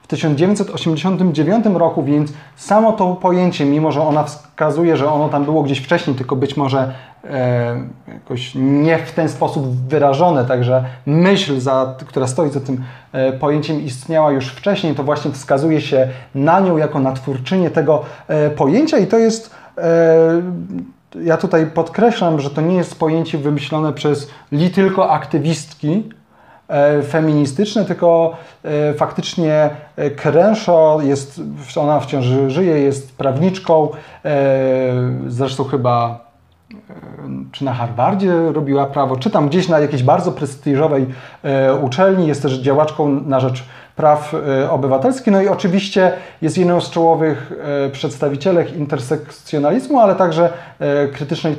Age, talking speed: 30-49, 130 wpm